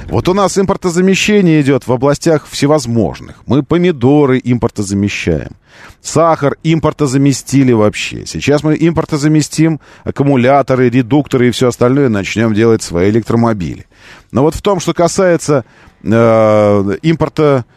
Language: Russian